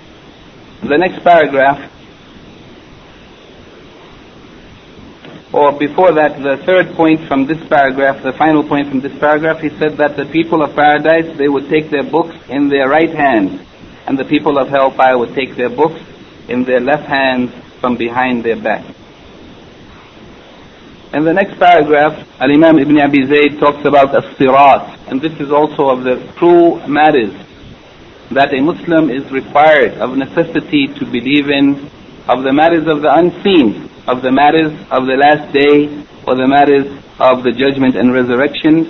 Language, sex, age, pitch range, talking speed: English, male, 60-79, 135-155 Hz, 155 wpm